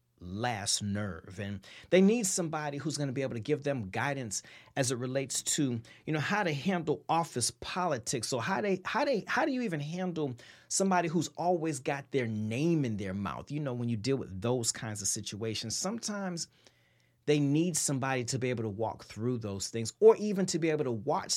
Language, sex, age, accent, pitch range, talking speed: English, male, 30-49, American, 110-155 Hz, 210 wpm